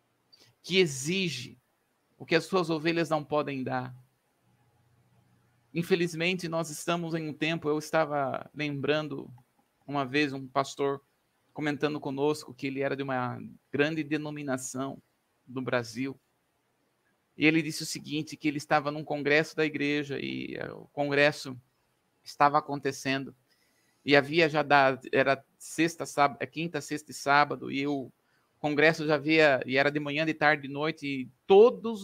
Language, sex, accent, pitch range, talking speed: Portuguese, male, Brazilian, 135-165 Hz, 145 wpm